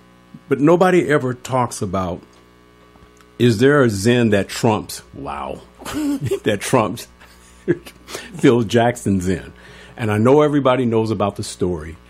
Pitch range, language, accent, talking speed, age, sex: 80-130 Hz, English, American, 125 wpm, 50-69, male